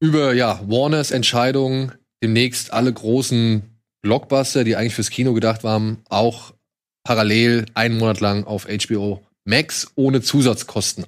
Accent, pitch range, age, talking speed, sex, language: German, 115-135 Hz, 20-39, 130 wpm, male, German